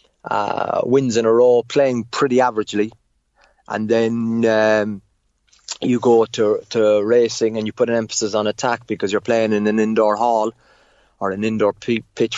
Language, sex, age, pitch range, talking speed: English, male, 30-49, 105-115 Hz, 170 wpm